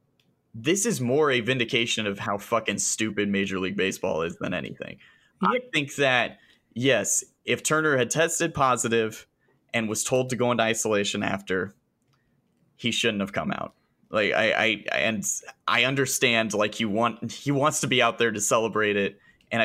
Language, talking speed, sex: English, 170 wpm, male